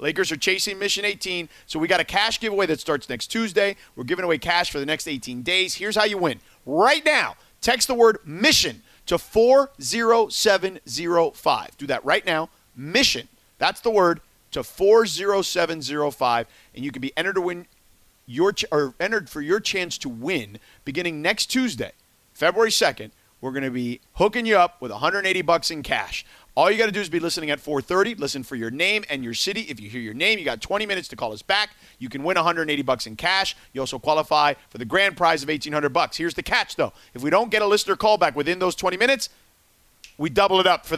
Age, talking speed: 40-59, 215 wpm